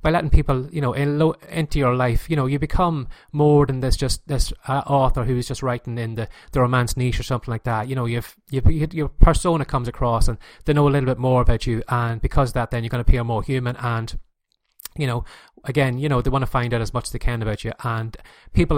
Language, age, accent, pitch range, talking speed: English, 20-39, Irish, 115-135 Hz, 260 wpm